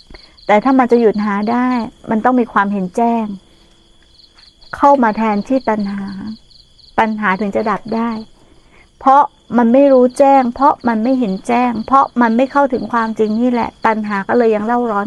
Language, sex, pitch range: Thai, female, 210-250 Hz